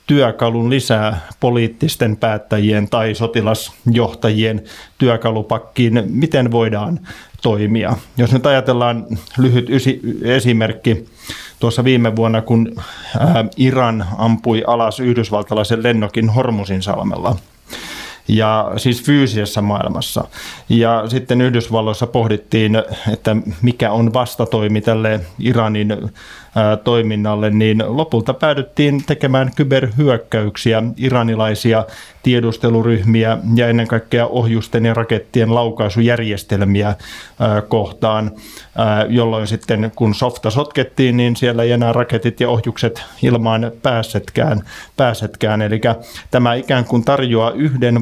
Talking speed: 95 wpm